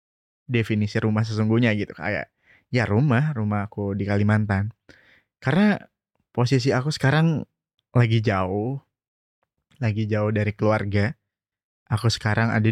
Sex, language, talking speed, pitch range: male, English, 115 wpm, 105-125 Hz